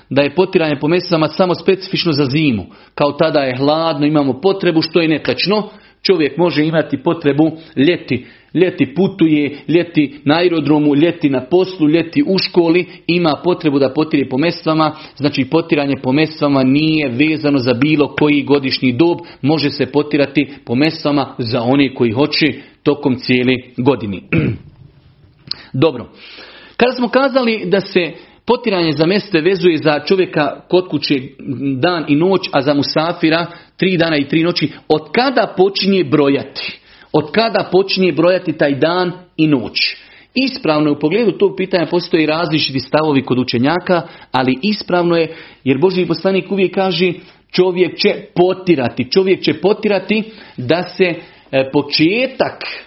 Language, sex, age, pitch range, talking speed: Croatian, male, 40-59, 145-185 Hz, 145 wpm